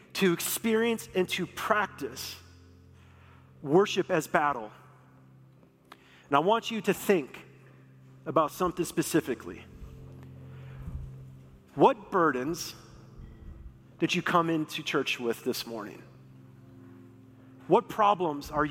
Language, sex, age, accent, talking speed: English, male, 40-59, American, 95 wpm